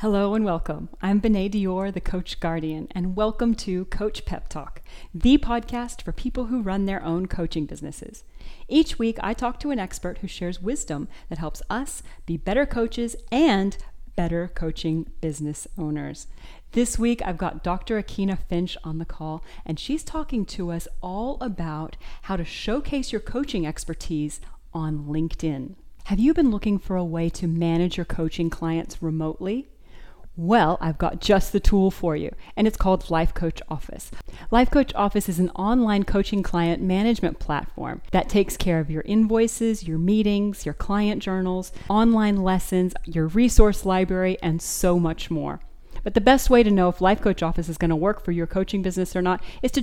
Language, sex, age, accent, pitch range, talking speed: English, female, 40-59, American, 170-220 Hz, 180 wpm